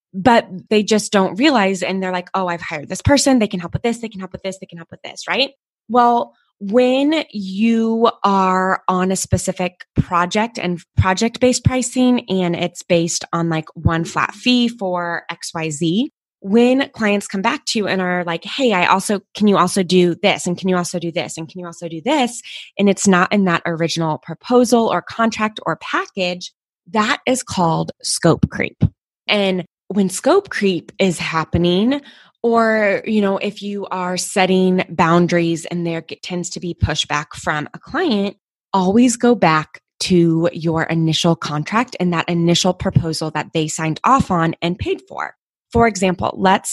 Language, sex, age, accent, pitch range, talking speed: English, female, 20-39, American, 170-215 Hz, 180 wpm